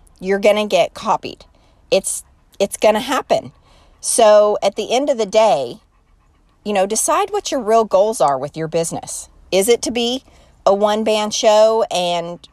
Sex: female